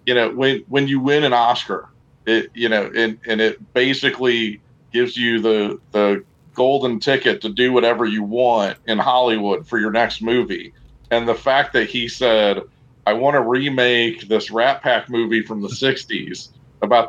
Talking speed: 170 wpm